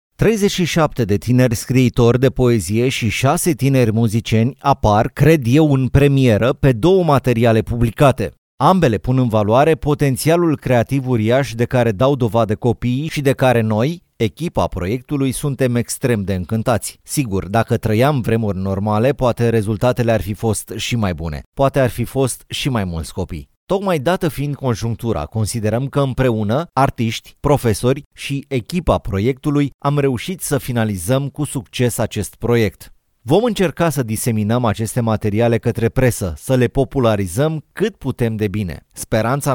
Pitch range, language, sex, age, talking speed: 110-135 Hz, Romanian, male, 30-49, 150 wpm